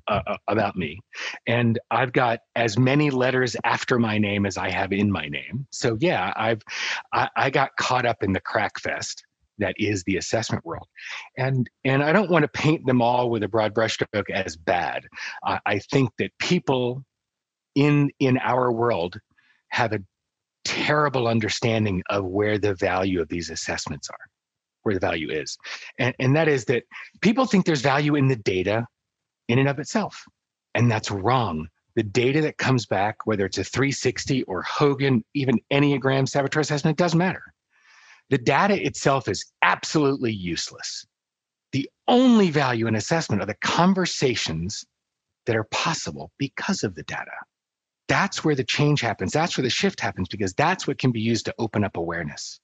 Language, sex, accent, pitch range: English, male, American, 105-140 Hz